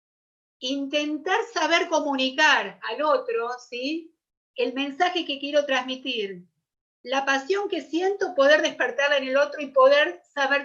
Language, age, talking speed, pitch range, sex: Spanish, 40-59, 130 wpm, 240-315 Hz, female